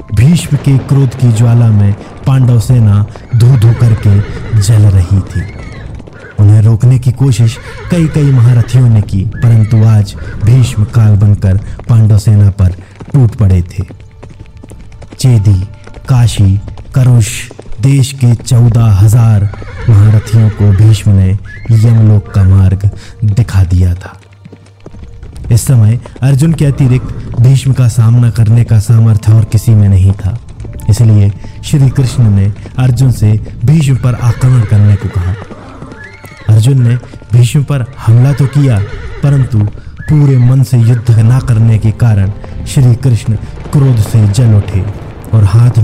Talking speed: 130 wpm